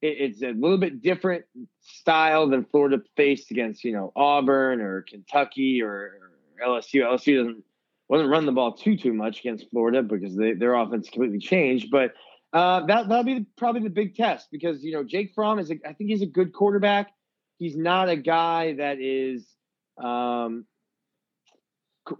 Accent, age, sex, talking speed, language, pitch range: American, 20-39, male, 180 wpm, English, 125-160 Hz